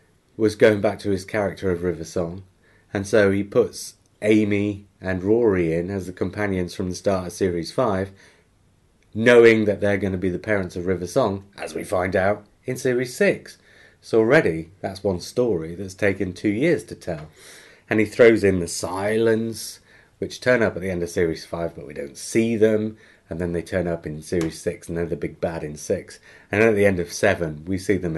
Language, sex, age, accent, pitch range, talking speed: English, male, 30-49, British, 90-110 Hz, 215 wpm